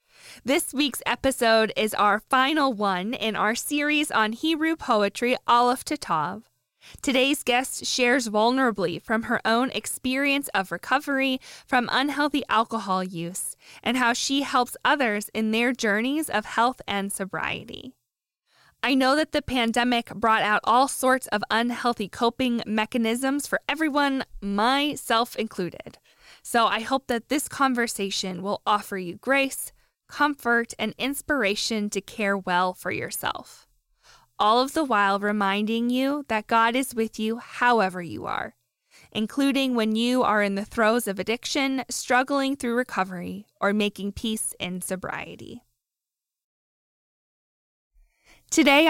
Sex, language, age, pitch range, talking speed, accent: female, English, 20-39, 205-260 Hz, 135 wpm, American